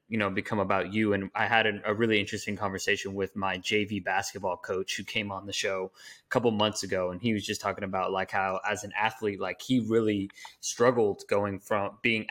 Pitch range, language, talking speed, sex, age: 95-110 Hz, English, 220 wpm, male, 20-39